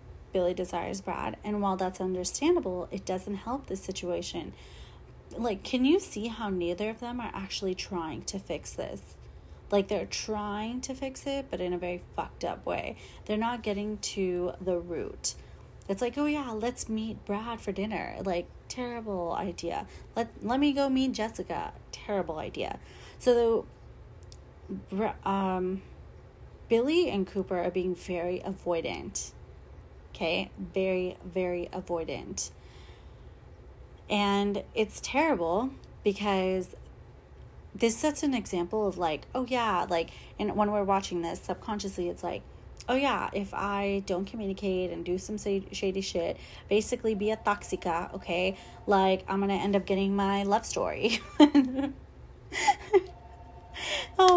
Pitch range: 180-230 Hz